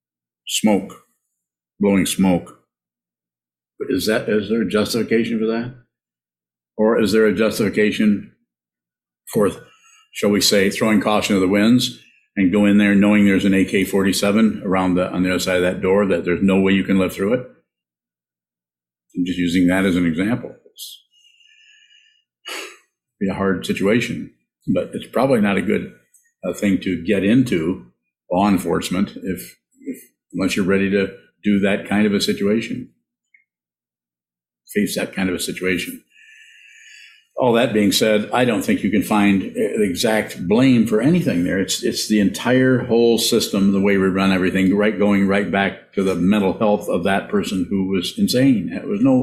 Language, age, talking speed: English, 50-69, 165 wpm